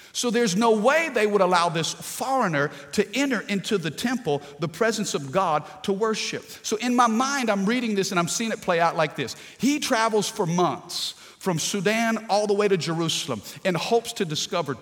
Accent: American